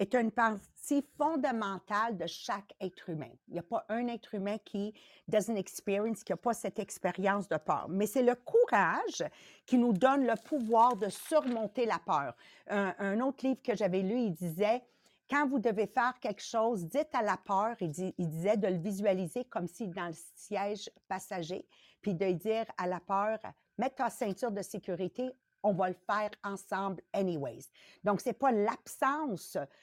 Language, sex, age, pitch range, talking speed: English, female, 50-69, 195-250 Hz, 190 wpm